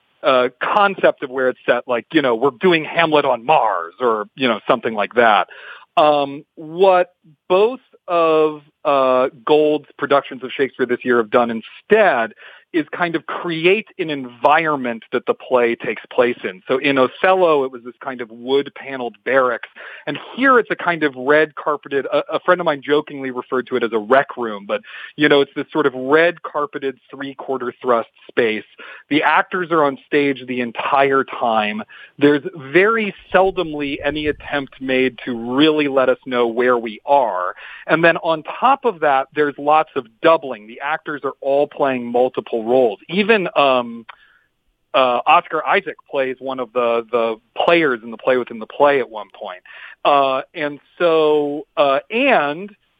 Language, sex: English, male